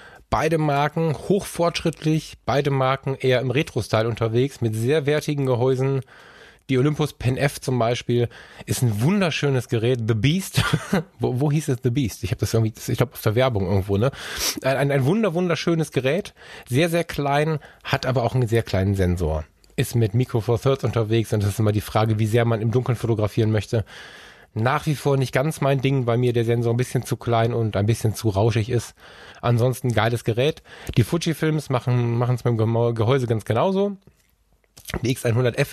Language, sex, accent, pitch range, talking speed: German, male, German, 115-140 Hz, 185 wpm